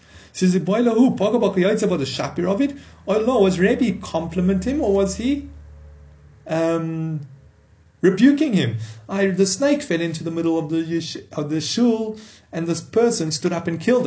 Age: 30-49